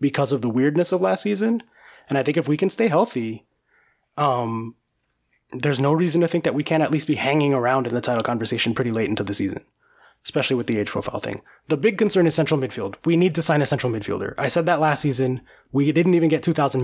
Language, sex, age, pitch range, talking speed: English, male, 20-39, 125-160 Hz, 240 wpm